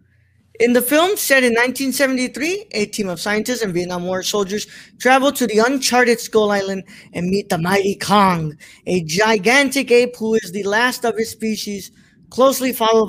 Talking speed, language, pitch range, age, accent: 170 wpm, English, 200-250 Hz, 20-39, American